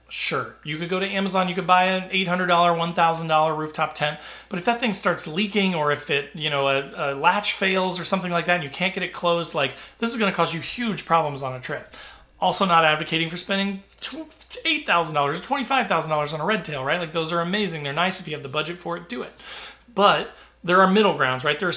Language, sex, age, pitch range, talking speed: English, male, 30-49, 150-190 Hz, 265 wpm